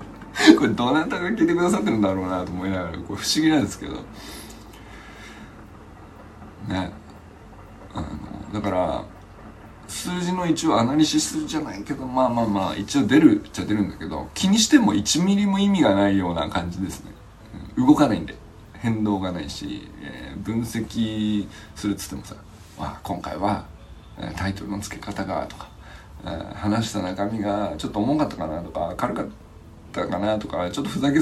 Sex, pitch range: male, 90-130 Hz